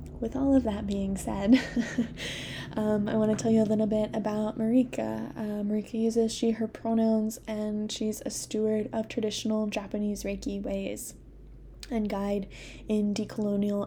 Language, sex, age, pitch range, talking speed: English, female, 10-29, 205-220 Hz, 155 wpm